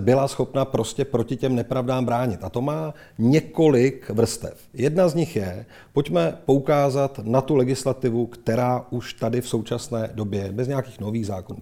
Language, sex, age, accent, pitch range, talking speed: Czech, male, 40-59, native, 120-150 Hz, 160 wpm